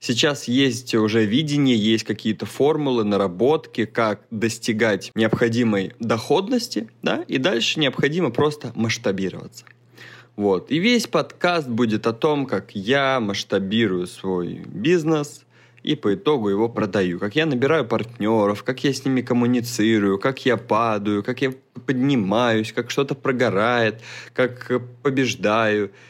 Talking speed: 125 wpm